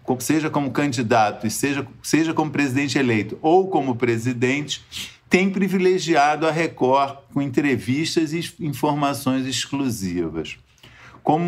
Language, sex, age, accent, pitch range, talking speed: Portuguese, male, 50-69, Brazilian, 125-165 Hz, 105 wpm